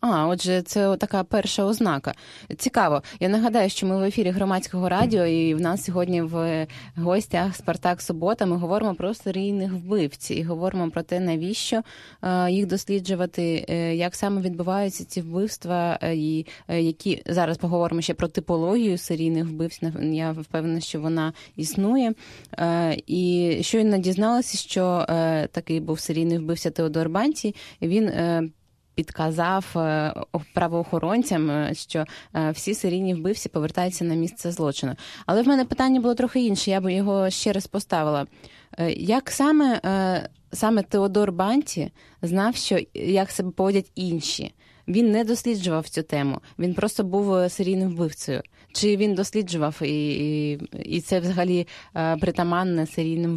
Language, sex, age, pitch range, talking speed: Ukrainian, female, 20-39, 165-200 Hz, 135 wpm